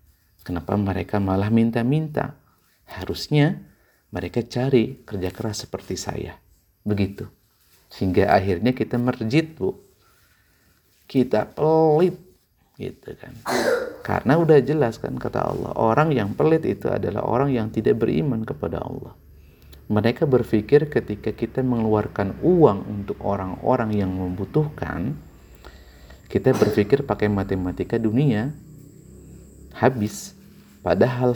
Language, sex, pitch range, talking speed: Indonesian, male, 95-130 Hz, 105 wpm